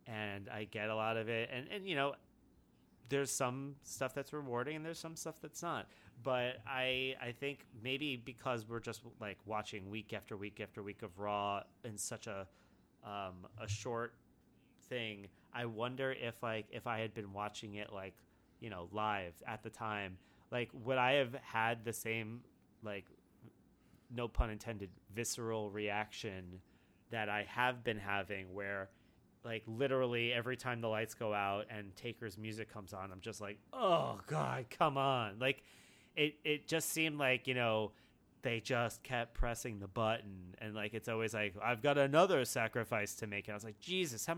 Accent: American